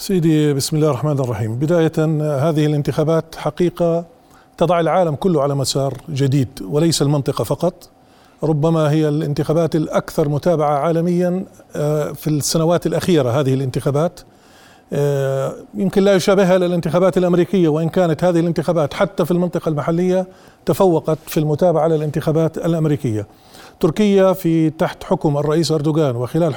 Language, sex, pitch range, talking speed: Arabic, male, 155-195 Hz, 125 wpm